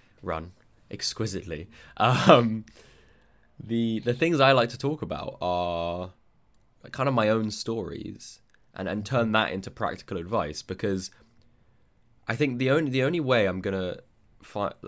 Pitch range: 95-130 Hz